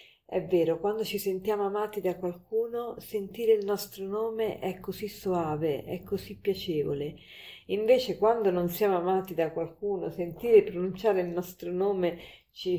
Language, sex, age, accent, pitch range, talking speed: Italian, female, 40-59, native, 170-205 Hz, 145 wpm